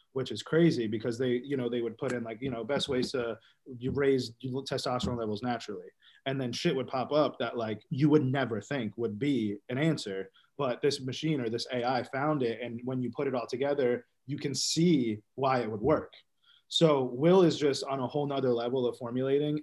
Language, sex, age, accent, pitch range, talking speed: English, male, 30-49, American, 125-155 Hz, 215 wpm